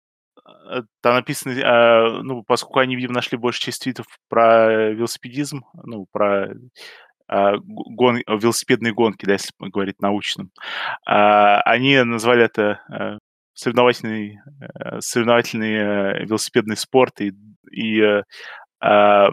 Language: Russian